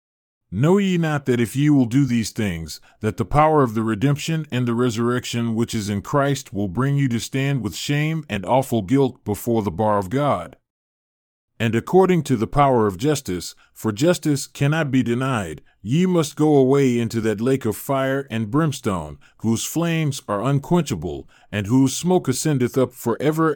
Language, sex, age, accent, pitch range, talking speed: English, male, 40-59, American, 110-145 Hz, 185 wpm